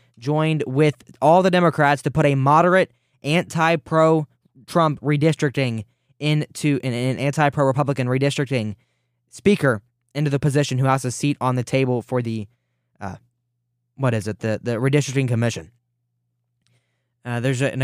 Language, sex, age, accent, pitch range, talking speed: English, male, 20-39, American, 120-150 Hz, 130 wpm